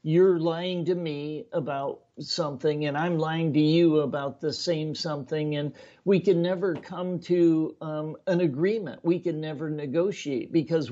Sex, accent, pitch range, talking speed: male, American, 150-180 Hz, 170 wpm